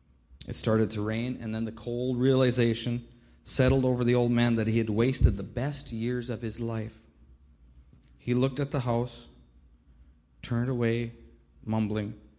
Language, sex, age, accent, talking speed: English, male, 40-59, American, 155 wpm